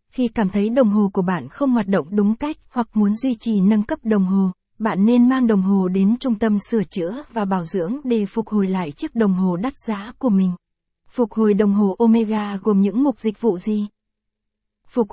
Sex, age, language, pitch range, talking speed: female, 20-39, Vietnamese, 195-230 Hz, 220 wpm